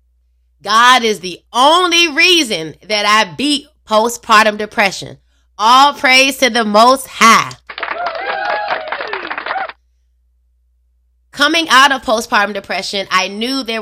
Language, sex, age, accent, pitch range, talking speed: English, female, 20-39, American, 175-230 Hz, 105 wpm